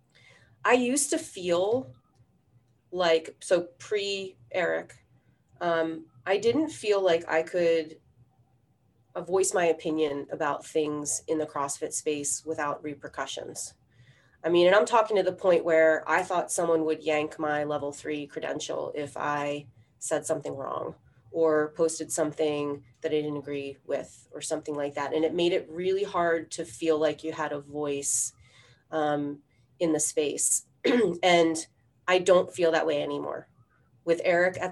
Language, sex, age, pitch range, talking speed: English, female, 30-49, 145-175 Hz, 145 wpm